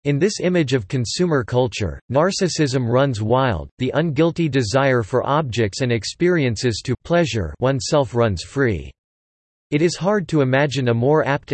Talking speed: 145 wpm